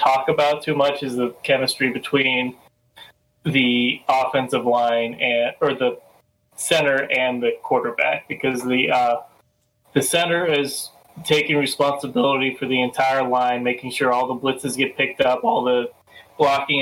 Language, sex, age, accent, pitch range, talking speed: English, male, 20-39, American, 120-140 Hz, 145 wpm